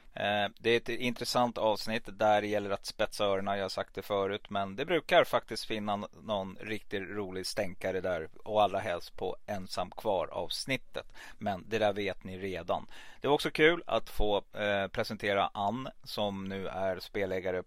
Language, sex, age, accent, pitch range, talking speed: Swedish, male, 30-49, native, 100-135 Hz, 175 wpm